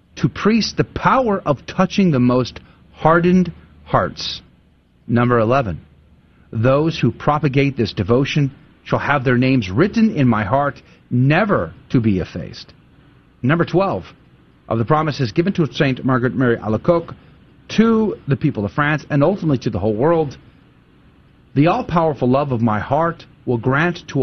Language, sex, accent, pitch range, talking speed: English, male, American, 115-150 Hz, 150 wpm